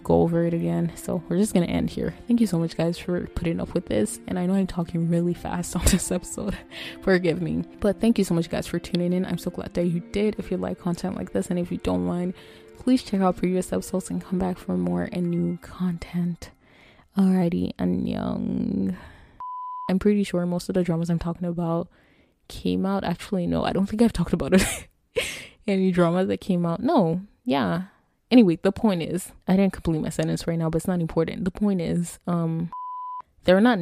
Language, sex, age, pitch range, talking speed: English, female, 20-39, 160-190 Hz, 220 wpm